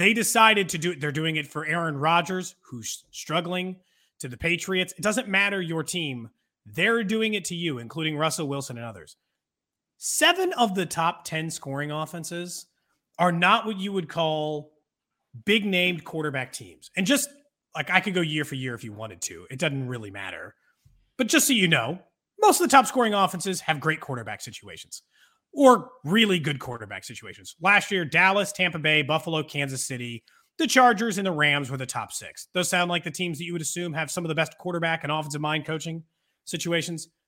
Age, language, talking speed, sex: 30-49, English, 195 wpm, male